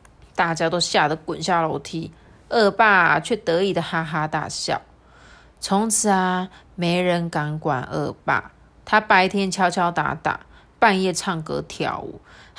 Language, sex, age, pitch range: Chinese, female, 20-39, 175-230 Hz